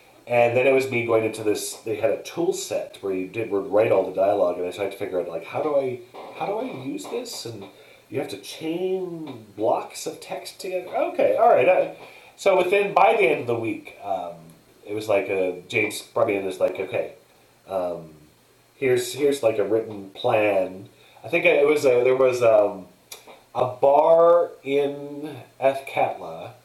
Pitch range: 100-140 Hz